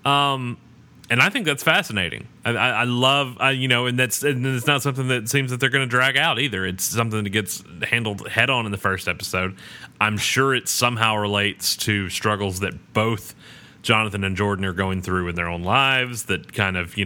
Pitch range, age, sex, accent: 95-120 Hz, 30-49, male, American